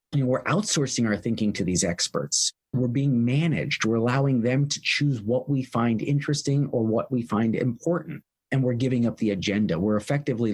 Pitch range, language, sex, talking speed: 115-165 Hz, English, male, 195 wpm